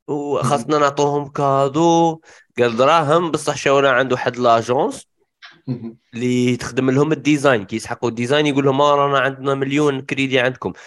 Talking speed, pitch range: 125 wpm, 110-145 Hz